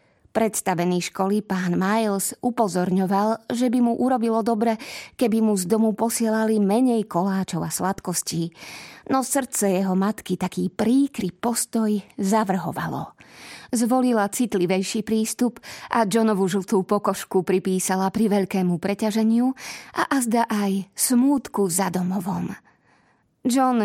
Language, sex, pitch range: Slovak, female, 190-225 Hz